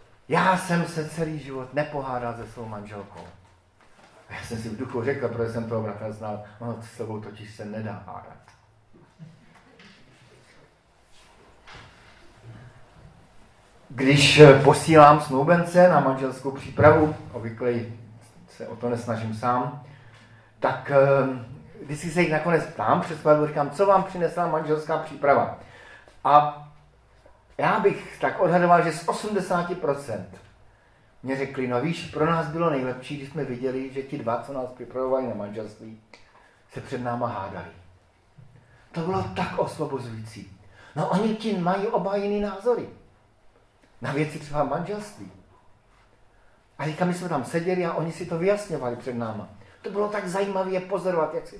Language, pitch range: Czech, 115-165 Hz